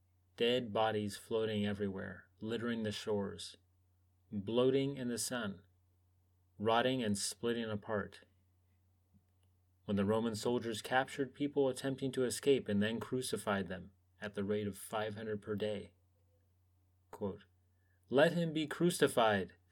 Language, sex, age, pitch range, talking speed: English, male, 30-49, 90-120 Hz, 120 wpm